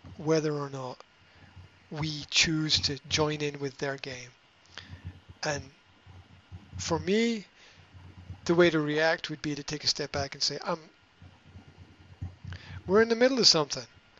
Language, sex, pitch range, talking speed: English, male, 125-190 Hz, 150 wpm